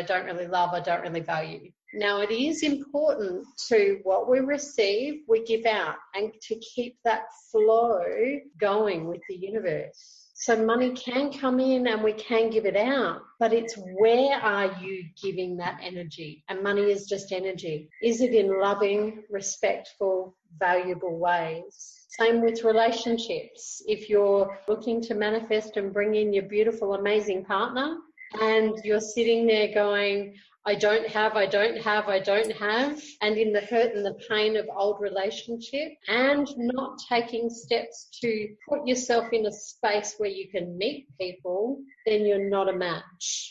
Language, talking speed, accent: English, 160 wpm, Australian